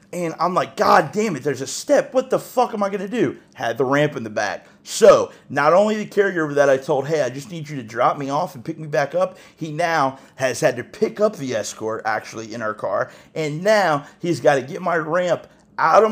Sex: male